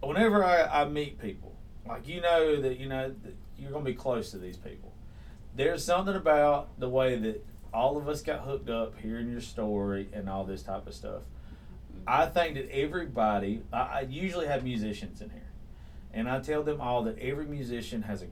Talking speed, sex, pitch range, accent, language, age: 195 wpm, male, 100-130 Hz, American, English, 30-49